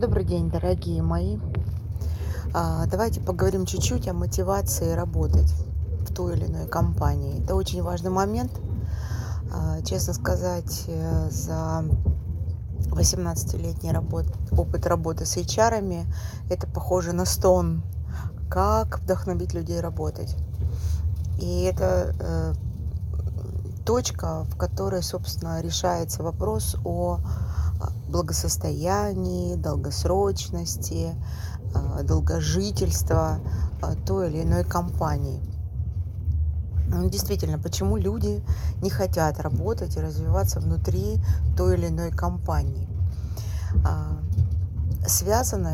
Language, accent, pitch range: Russian, native, 85-95 Hz